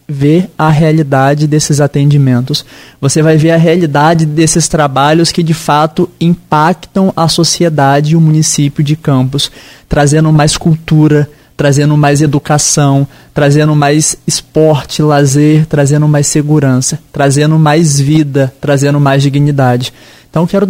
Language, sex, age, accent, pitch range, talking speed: Portuguese, male, 20-39, Brazilian, 140-160 Hz, 130 wpm